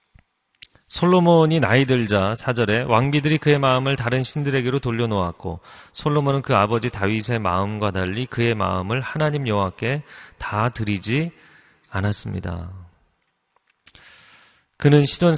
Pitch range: 95-130 Hz